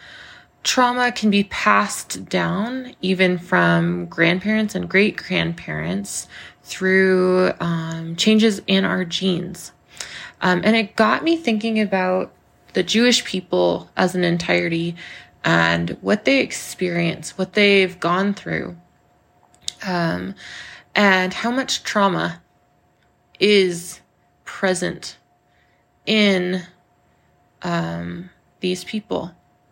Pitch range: 175-200 Hz